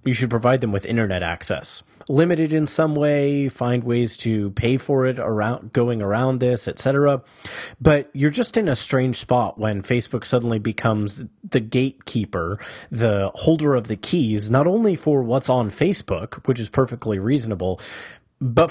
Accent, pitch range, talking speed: American, 105-135 Hz, 165 wpm